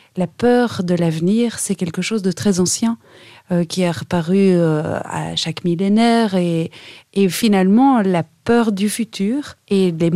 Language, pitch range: French, 170-210 Hz